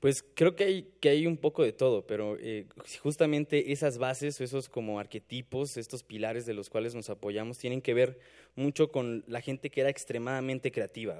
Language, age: Spanish, 20-39